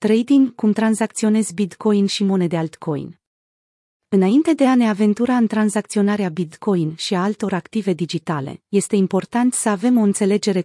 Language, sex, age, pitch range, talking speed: Romanian, female, 30-49, 175-215 Hz, 145 wpm